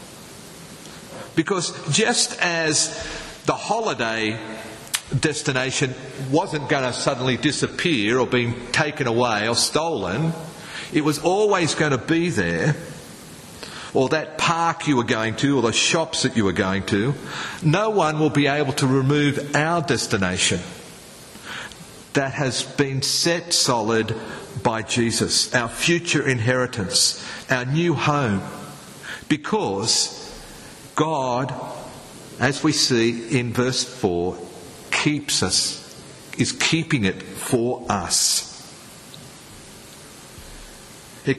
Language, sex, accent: English, male, Australian